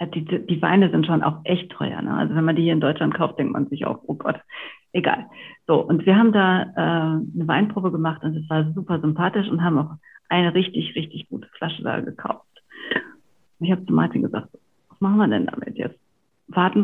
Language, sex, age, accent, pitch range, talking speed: German, female, 50-69, German, 160-200 Hz, 215 wpm